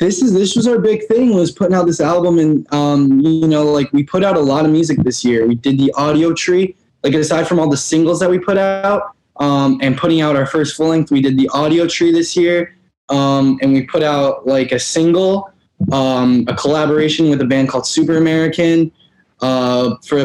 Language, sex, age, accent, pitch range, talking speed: English, male, 10-29, American, 130-165 Hz, 220 wpm